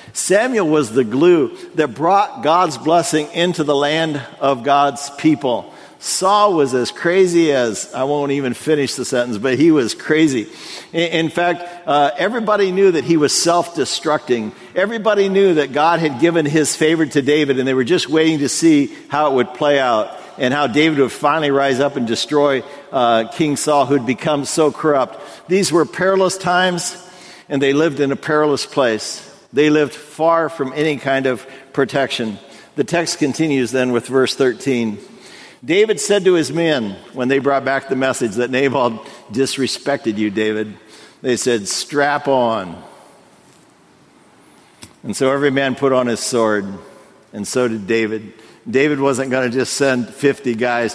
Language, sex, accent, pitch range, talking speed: English, male, American, 130-165 Hz, 170 wpm